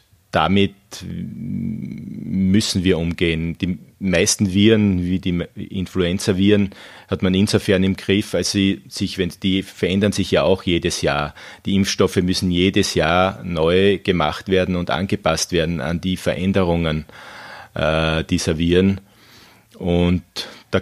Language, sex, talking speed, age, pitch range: German, male, 130 wpm, 30-49, 85-95 Hz